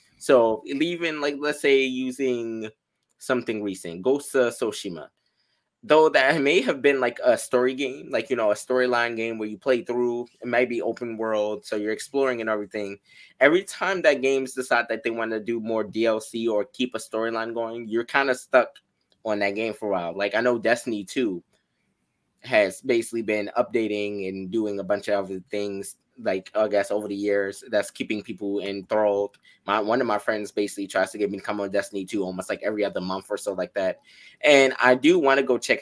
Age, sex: 20-39, male